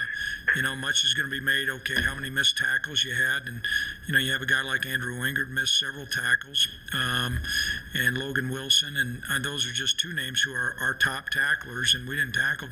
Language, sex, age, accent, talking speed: English, male, 50-69, American, 220 wpm